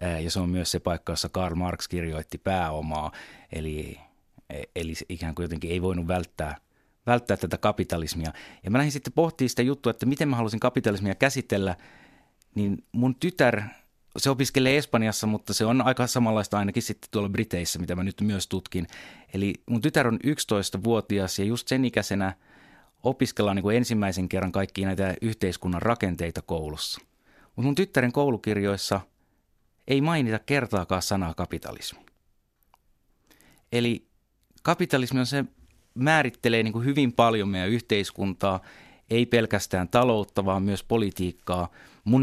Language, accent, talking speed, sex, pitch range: Finnish, native, 135 wpm, male, 90-120 Hz